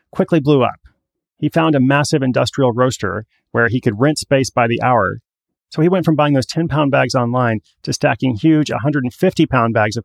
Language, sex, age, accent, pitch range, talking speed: English, male, 30-49, American, 120-150 Hz, 205 wpm